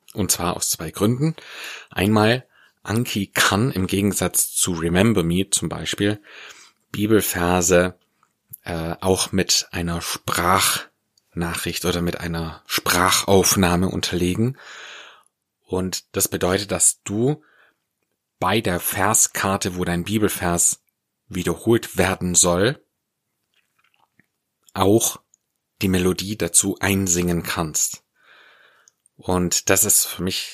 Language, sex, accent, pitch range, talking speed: German, male, German, 85-100 Hz, 100 wpm